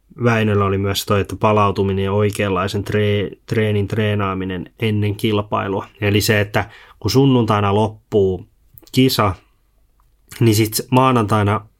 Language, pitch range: Finnish, 100-115 Hz